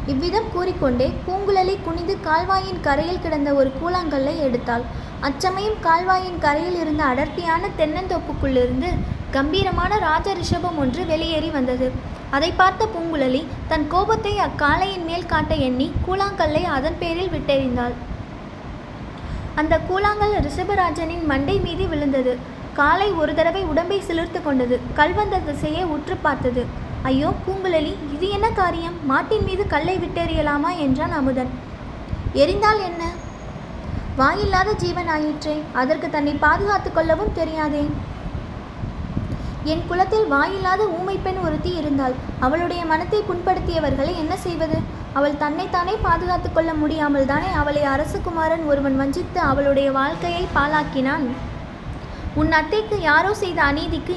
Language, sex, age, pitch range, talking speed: Tamil, female, 20-39, 290-370 Hz, 100 wpm